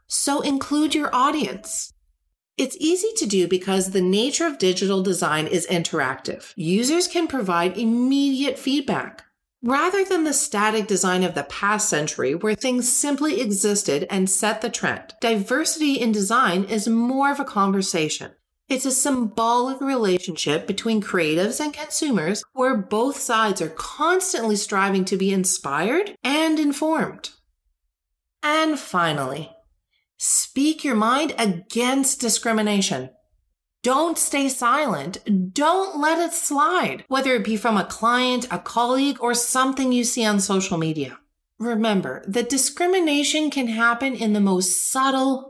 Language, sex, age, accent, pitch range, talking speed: English, female, 40-59, American, 190-275 Hz, 135 wpm